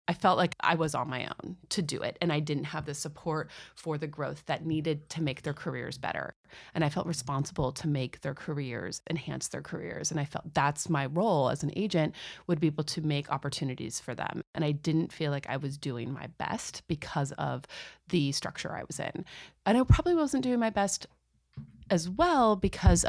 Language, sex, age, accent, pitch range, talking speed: English, female, 30-49, American, 150-180 Hz, 215 wpm